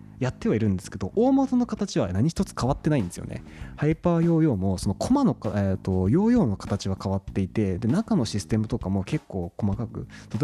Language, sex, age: Japanese, male, 20-39